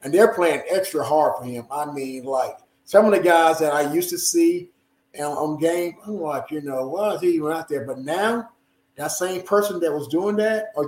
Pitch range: 150-210 Hz